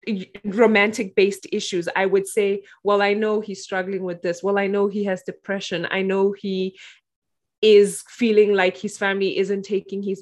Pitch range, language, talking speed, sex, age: 185-215 Hz, English, 175 wpm, female, 20-39